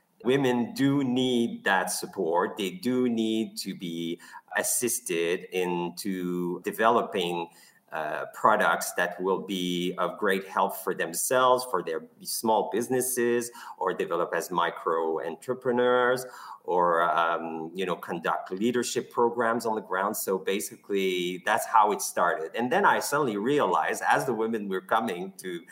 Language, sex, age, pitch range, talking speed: English, male, 50-69, 90-125 Hz, 140 wpm